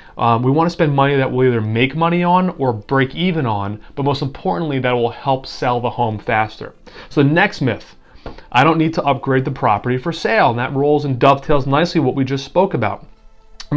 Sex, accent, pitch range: male, American, 120-150 Hz